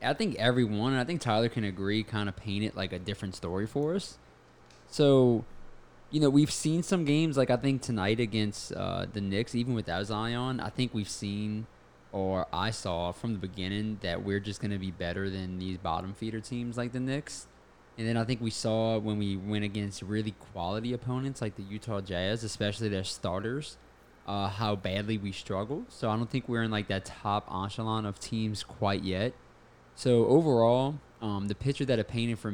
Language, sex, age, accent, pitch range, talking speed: English, male, 20-39, American, 95-115 Hz, 205 wpm